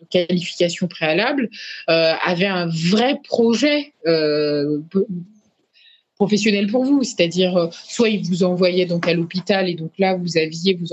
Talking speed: 150 wpm